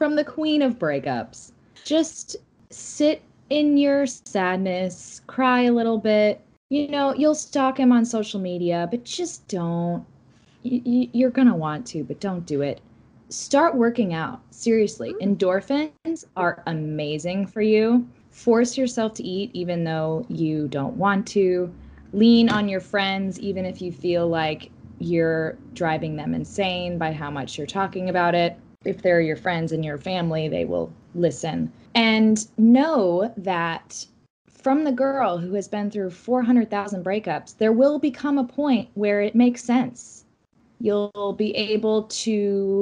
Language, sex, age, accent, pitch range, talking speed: English, female, 10-29, American, 170-240 Hz, 150 wpm